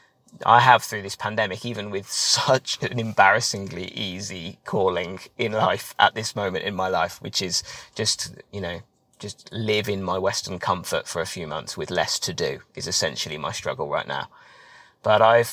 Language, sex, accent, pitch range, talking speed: English, male, British, 100-130 Hz, 180 wpm